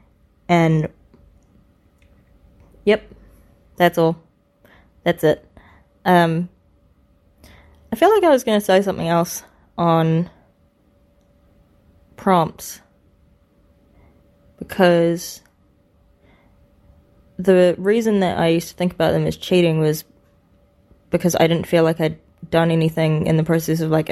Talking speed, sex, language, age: 110 wpm, female, English, 20-39